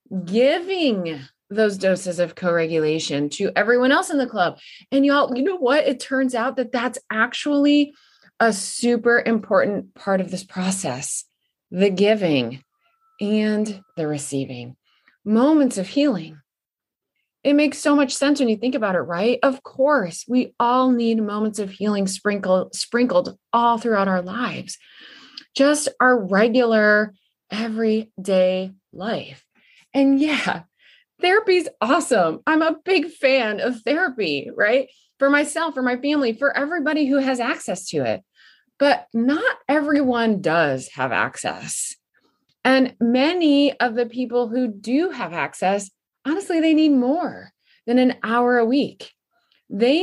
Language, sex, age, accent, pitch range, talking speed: English, female, 30-49, American, 195-275 Hz, 140 wpm